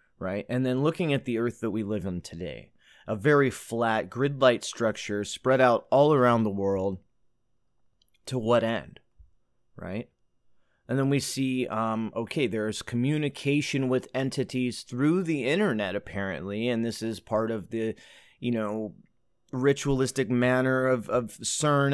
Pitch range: 105-130 Hz